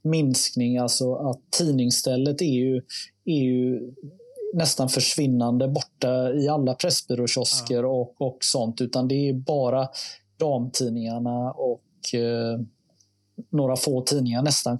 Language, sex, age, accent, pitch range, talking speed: Swedish, male, 30-49, native, 125-165 Hz, 120 wpm